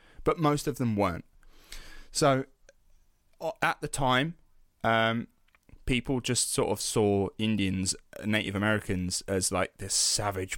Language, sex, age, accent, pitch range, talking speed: English, male, 10-29, British, 95-125 Hz, 125 wpm